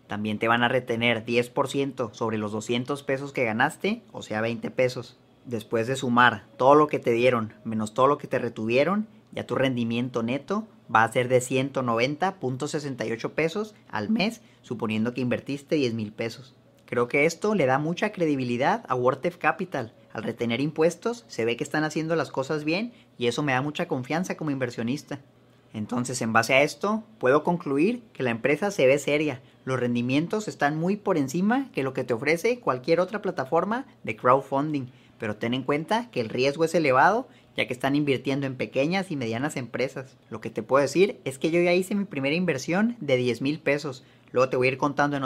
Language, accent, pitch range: Spanish, Mexican, 125-160 Hz